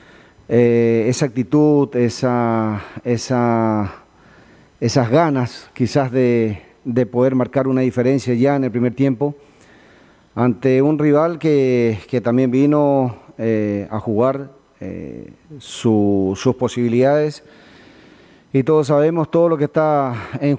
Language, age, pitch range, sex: Spanish, 40-59, 115-140 Hz, male